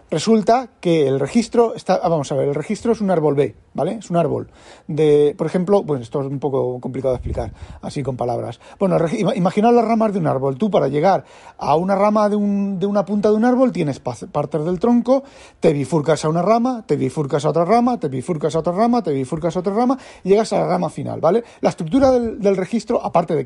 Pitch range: 145-220 Hz